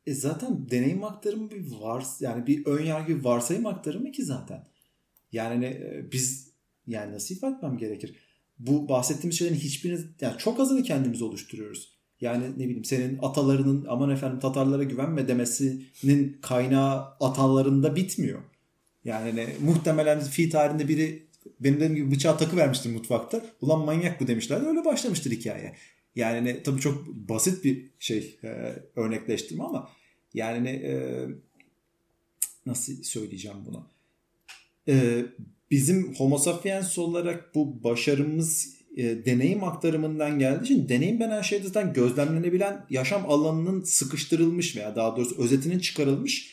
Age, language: 30-49, Turkish